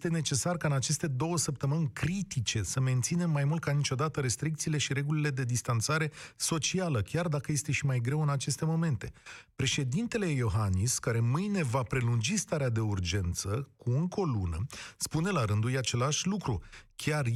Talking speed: 170 wpm